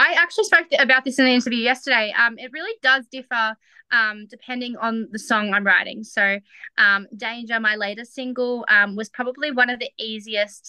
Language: English